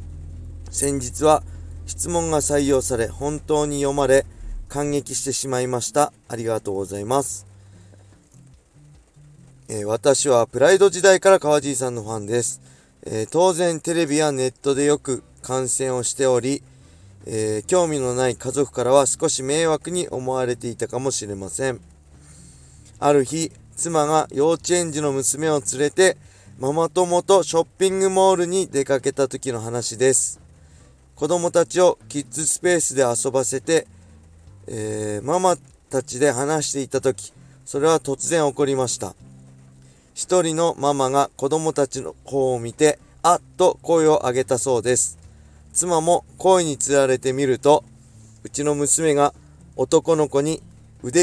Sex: male